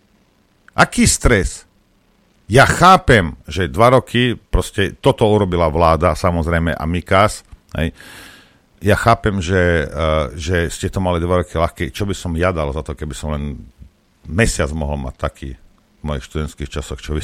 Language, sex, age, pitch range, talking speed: Slovak, male, 50-69, 85-120 Hz, 160 wpm